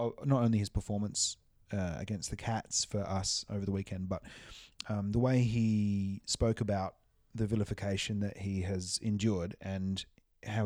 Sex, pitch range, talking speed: male, 95-120 Hz, 160 wpm